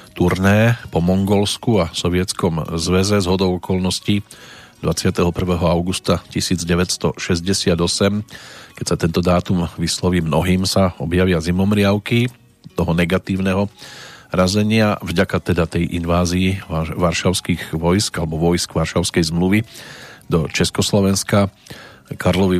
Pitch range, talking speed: 90-100 Hz, 100 wpm